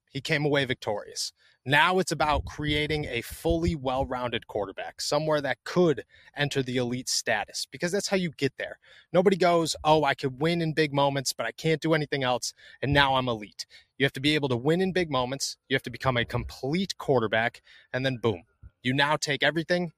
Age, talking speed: 30-49, 205 wpm